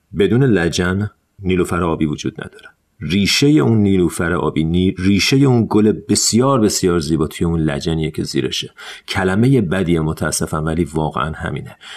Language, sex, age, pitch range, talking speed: Persian, male, 40-59, 85-105 Hz, 130 wpm